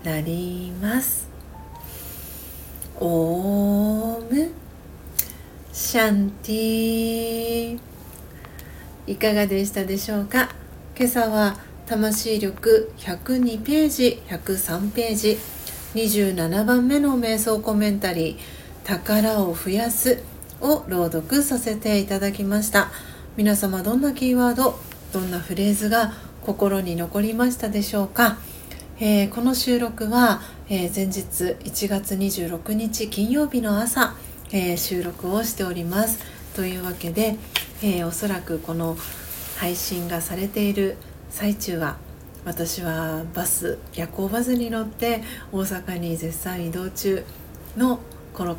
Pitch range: 170-225 Hz